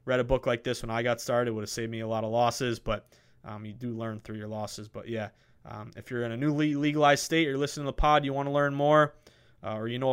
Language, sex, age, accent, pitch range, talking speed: English, male, 20-39, American, 115-140 Hz, 300 wpm